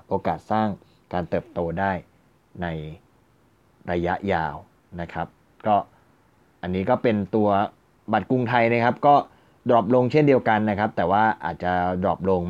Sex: male